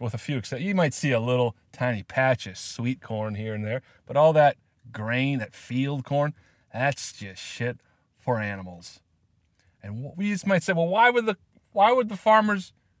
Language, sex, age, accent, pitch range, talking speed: English, male, 30-49, American, 110-155 Hz, 195 wpm